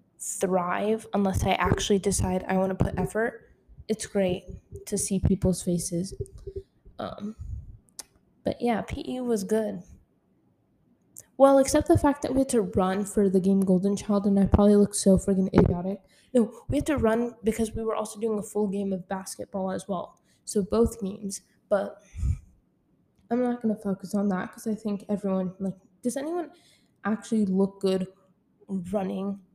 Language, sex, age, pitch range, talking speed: English, female, 10-29, 190-220 Hz, 165 wpm